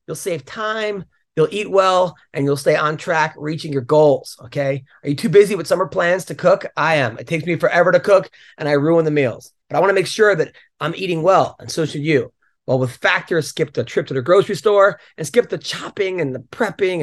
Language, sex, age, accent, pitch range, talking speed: English, male, 30-49, American, 155-210 Hz, 240 wpm